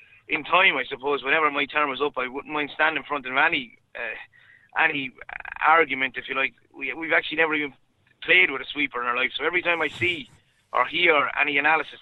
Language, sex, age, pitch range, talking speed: English, male, 30-49, 130-160 Hz, 220 wpm